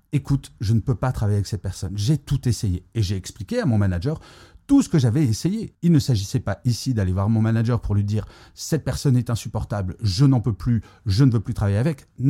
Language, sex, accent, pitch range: French, male, French, 100-140 Hz